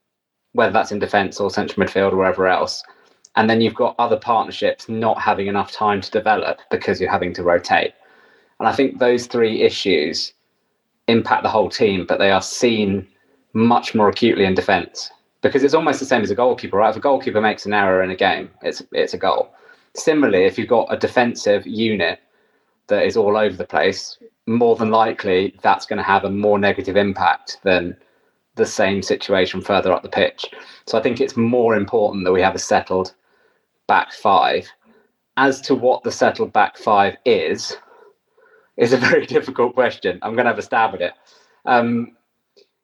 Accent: British